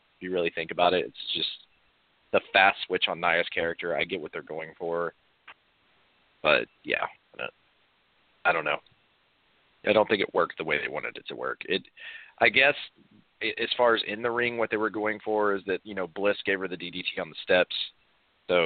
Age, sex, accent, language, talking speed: 30-49, male, American, English, 205 wpm